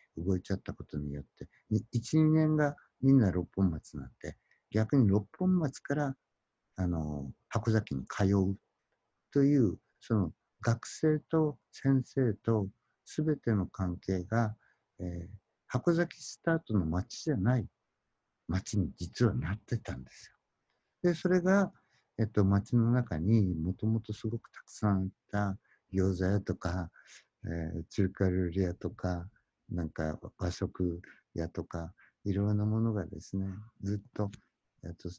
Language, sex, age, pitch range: Japanese, male, 60-79, 90-115 Hz